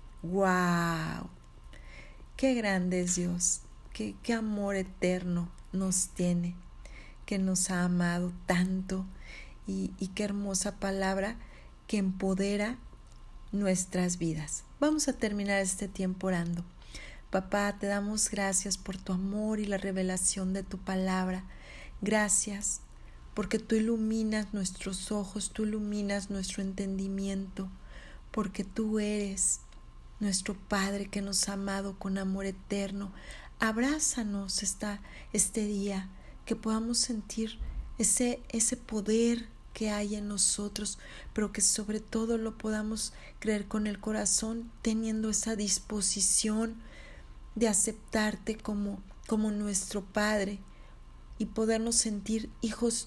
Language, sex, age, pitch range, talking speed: Spanish, female, 40-59, 190-220 Hz, 115 wpm